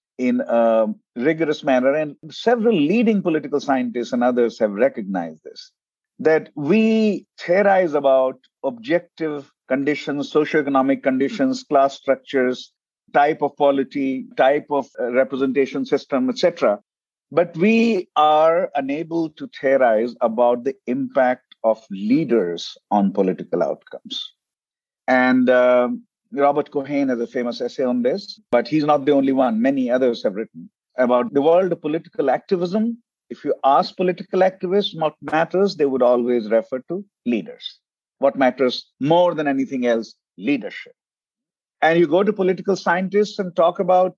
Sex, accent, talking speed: male, Indian, 135 wpm